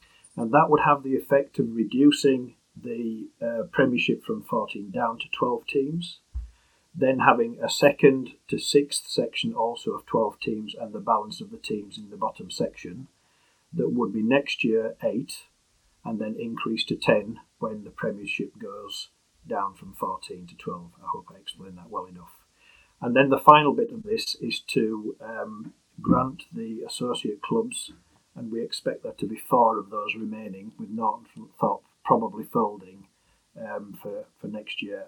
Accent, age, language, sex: British, 40-59, English, male